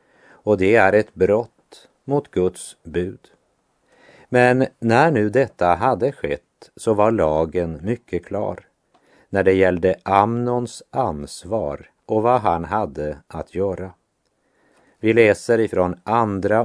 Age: 50-69